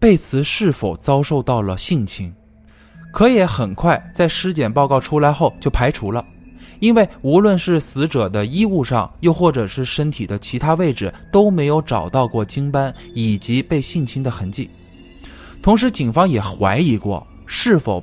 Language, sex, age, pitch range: Chinese, male, 20-39, 100-160 Hz